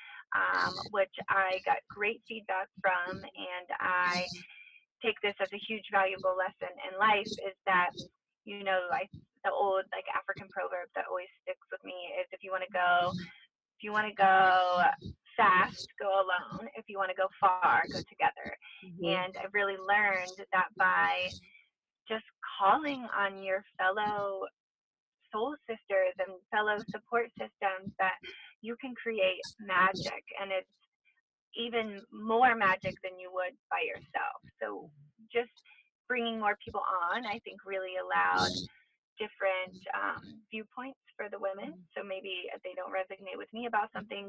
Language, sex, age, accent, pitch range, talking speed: English, female, 20-39, American, 185-225 Hz, 155 wpm